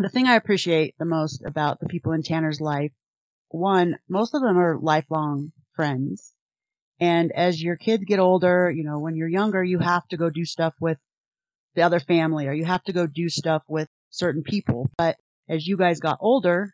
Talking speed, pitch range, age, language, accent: 200 wpm, 155-185 Hz, 30-49, English, American